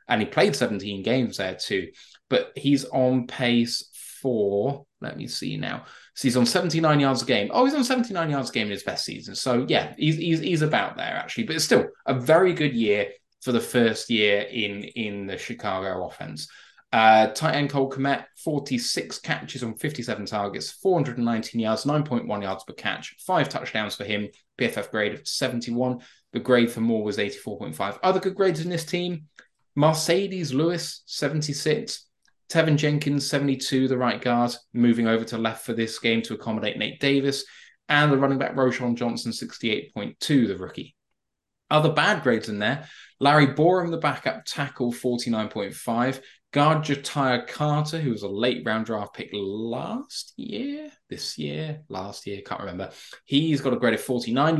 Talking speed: 170 wpm